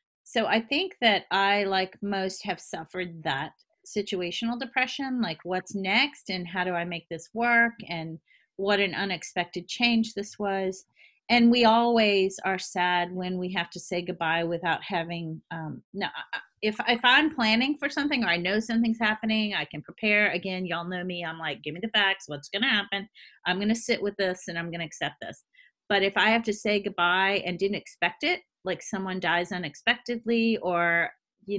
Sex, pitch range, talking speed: female, 170-220 Hz, 195 wpm